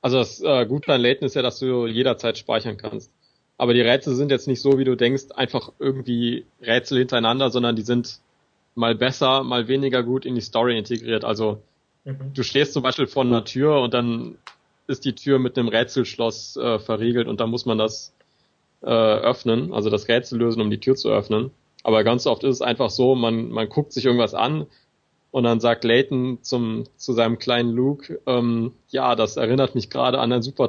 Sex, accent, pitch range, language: male, German, 115-130 Hz, German